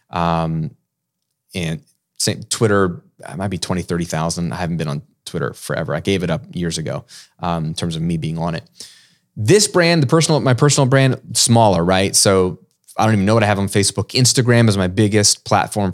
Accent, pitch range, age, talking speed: American, 100-135 Hz, 20-39, 195 wpm